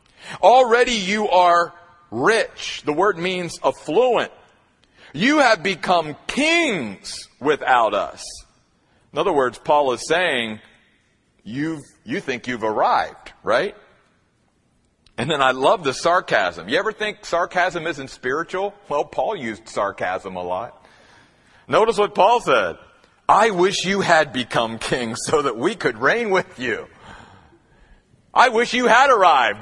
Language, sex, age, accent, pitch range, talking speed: English, male, 50-69, American, 120-180 Hz, 135 wpm